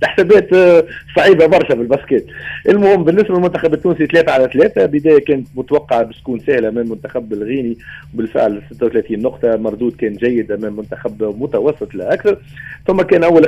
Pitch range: 120-160 Hz